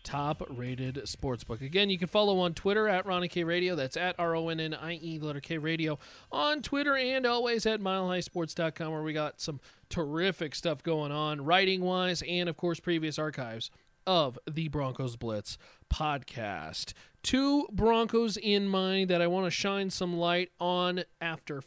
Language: English